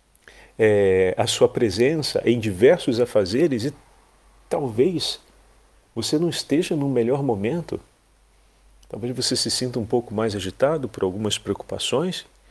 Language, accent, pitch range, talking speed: Portuguese, Brazilian, 110-145 Hz, 125 wpm